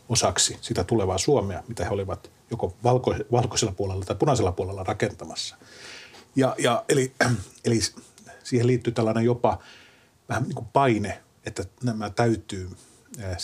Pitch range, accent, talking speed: 95-120 Hz, native, 135 wpm